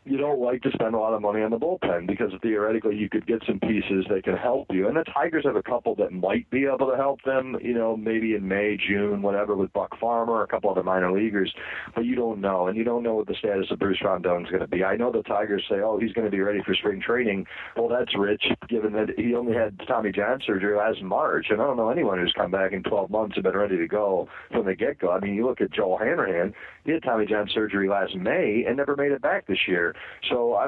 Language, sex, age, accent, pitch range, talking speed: English, male, 50-69, American, 100-120 Hz, 270 wpm